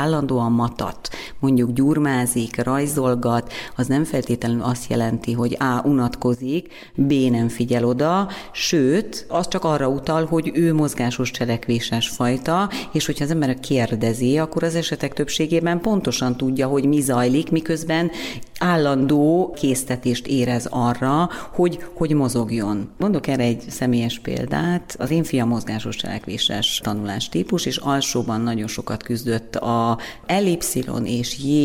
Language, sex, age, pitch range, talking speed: Hungarian, female, 40-59, 120-155 Hz, 130 wpm